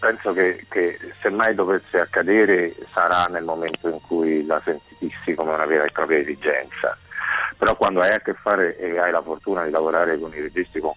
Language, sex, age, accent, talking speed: Italian, male, 50-69, native, 195 wpm